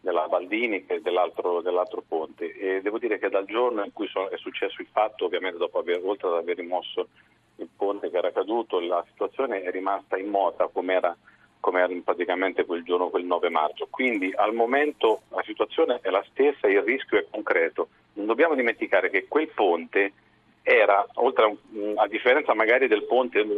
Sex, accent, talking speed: male, native, 180 wpm